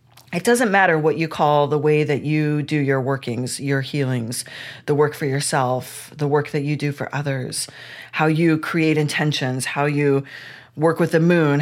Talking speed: 185 wpm